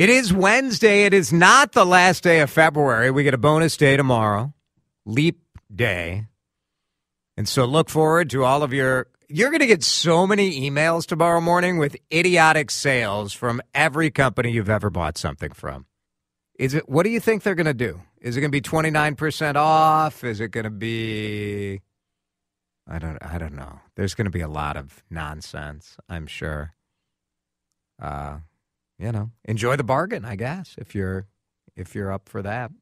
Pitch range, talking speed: 105-155 Hz, 180 wpm